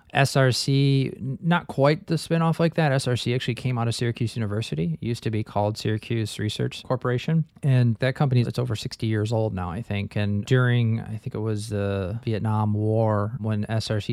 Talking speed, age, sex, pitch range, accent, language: 185 wpm, 20-39, male, 105-120 Hz, American, English